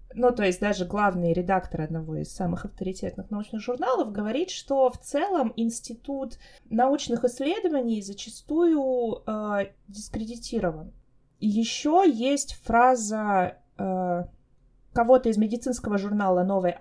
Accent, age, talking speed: native, 20-39, 110 wpm